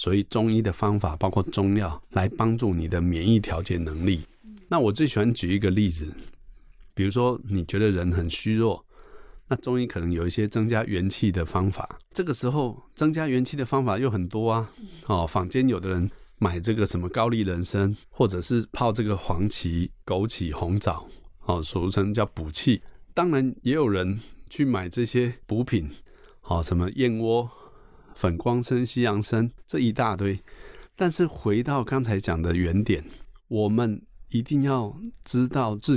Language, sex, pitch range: Chinese, male, 95-125 Hz